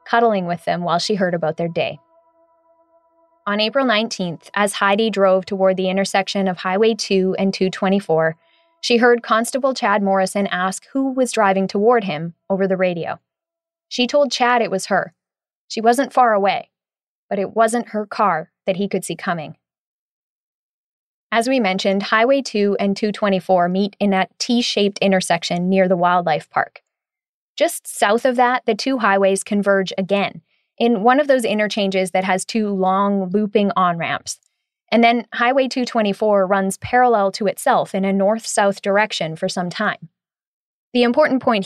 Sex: female